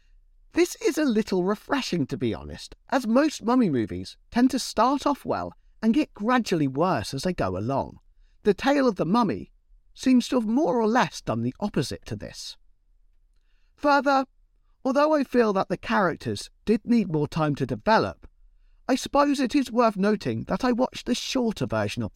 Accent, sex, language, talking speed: British, male, English, 180 wpm